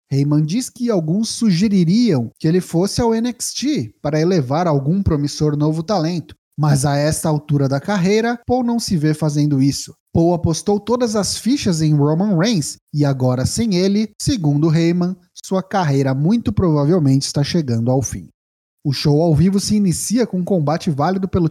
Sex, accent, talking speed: male, Brazilian, 170 wpm